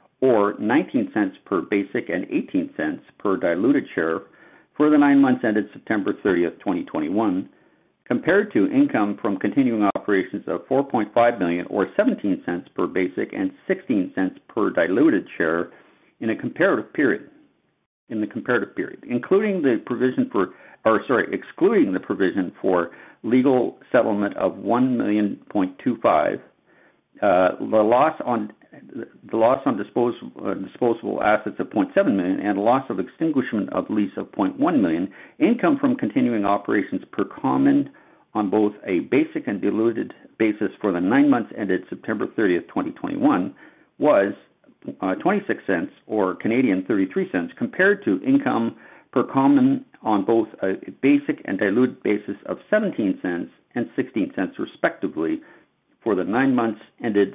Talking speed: 140 wpm